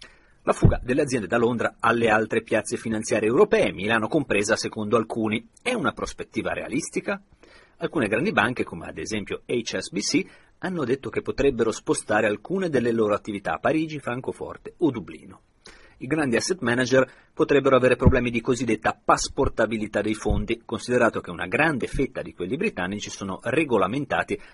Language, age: Italian, 40-59